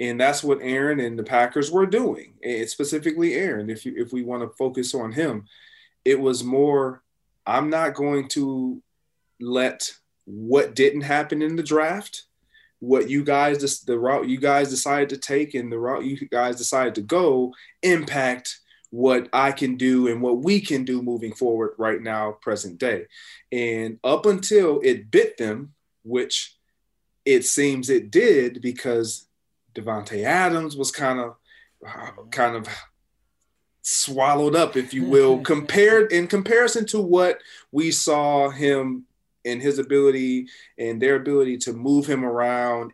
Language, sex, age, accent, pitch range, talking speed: English, male, 30-49, American, 120-155 Hz, 155 wpm